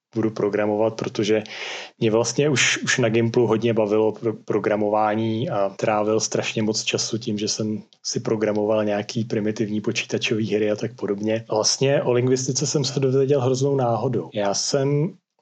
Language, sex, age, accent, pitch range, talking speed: Czech, male, 30-49, native, 110-130 Hz, 155 wpm